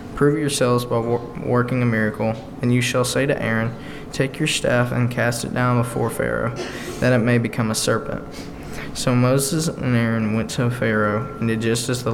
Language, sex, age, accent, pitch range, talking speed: English, male, 20-39, American, 110-130 Hz, 195 wpm